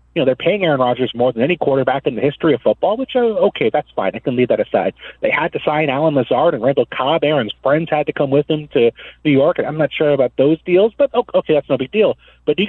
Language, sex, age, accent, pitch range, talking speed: English, male, 40-59, American, 125-170 Hz, 280 wpm